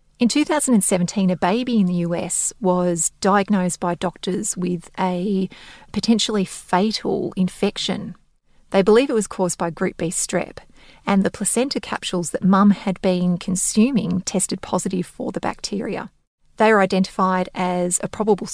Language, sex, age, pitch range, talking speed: English, female, 30-49, 180-210 Hz, 145 wpm